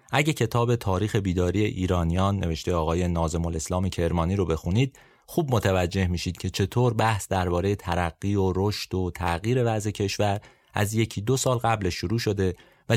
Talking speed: 155 wpm